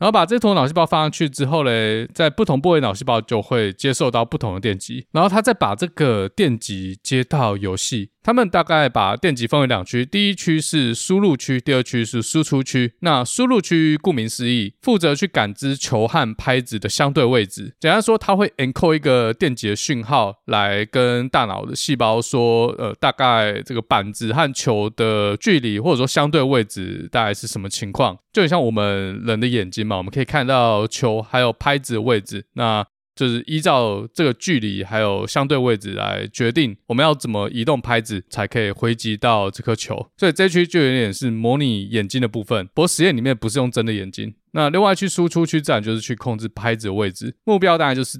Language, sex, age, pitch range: Chinese, male, 20-39, 110-150 Hz